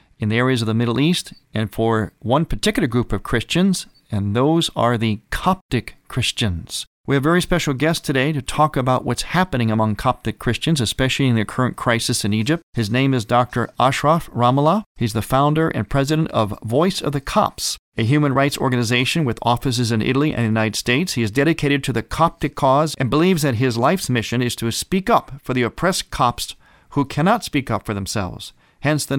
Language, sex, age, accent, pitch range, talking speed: English, male, 40-59, American, 115-150 Hz, 205 wpm